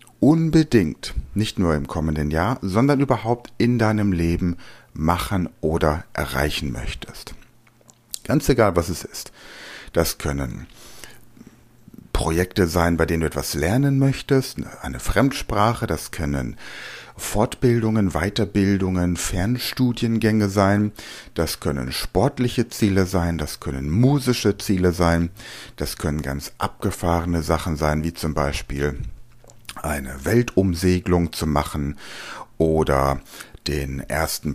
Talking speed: 110 wpm